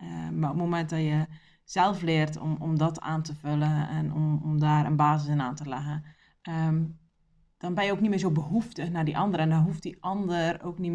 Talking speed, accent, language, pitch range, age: 240 wpm, Dutch, Dutch, 155-195 Hz, 20-39